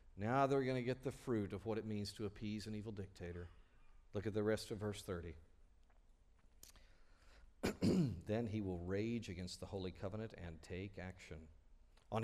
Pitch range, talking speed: 100-140 Hz, 170 wpm